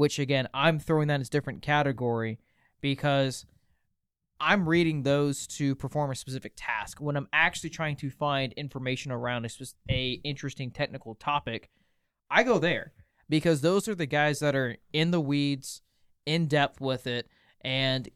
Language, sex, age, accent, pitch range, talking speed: English, male, 20-39, American, 130-155 Hz, 165 wpm